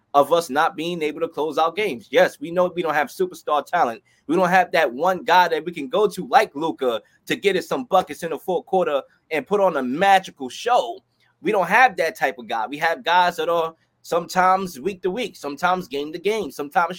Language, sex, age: English, male, 20-39